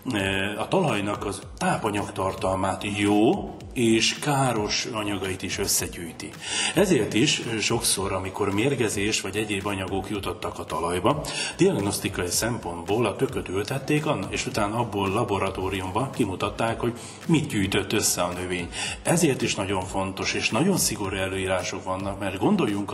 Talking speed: 125 wpm